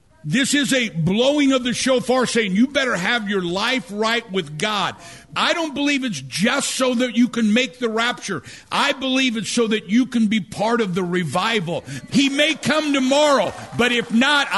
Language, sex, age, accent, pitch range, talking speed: English, male, 50-69, American, 190-255 Hz, 195 wpm